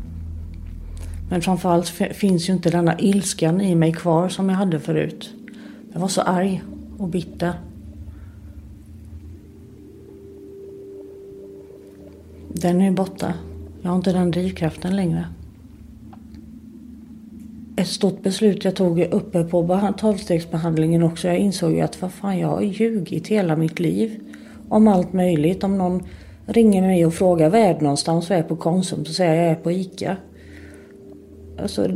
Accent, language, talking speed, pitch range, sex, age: native, Swedish, 135 wpm, 155-195 Hz, female, 40-59